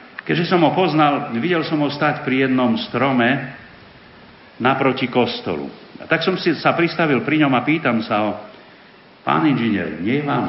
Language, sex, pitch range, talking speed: Slovak, male, 110-140 Hz, 170 wpm